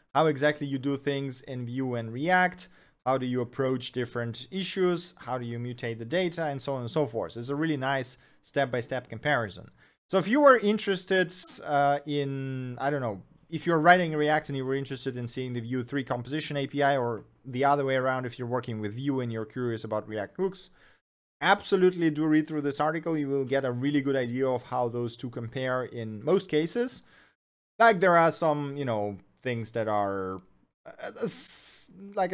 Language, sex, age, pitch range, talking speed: English, male, 30-49, 125-165 Hz, 195 wpm